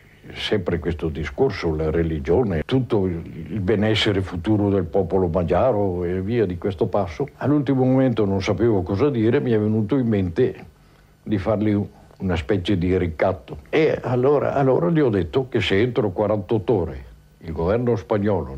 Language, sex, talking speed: Italian, male, 155 wpm